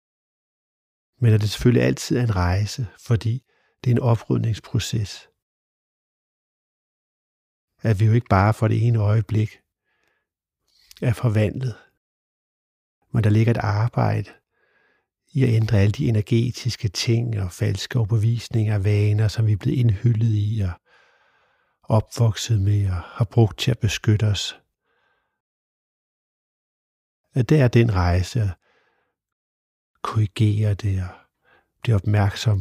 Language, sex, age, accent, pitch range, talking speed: Danish, male, 60-79, native, 105-120 Hz, 125 wpm